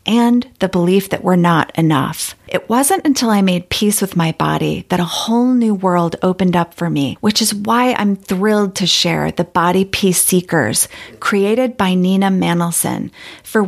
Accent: American